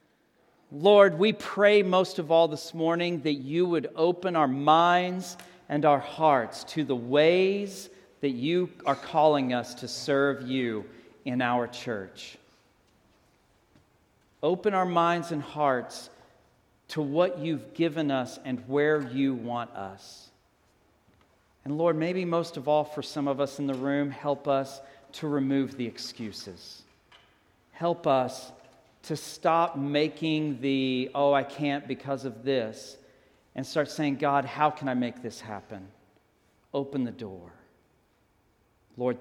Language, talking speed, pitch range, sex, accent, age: English, 140 wpm, 120-155 Hz, male, American, 40-59